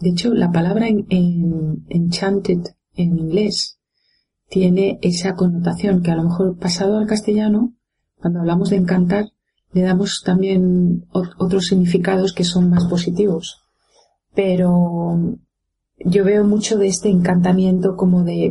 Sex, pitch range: female, 170-190 Hz